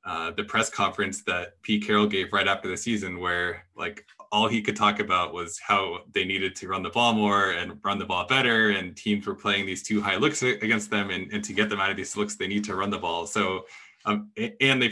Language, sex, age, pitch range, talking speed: English, male, 20-39, 100-125 Hz, 250 wpm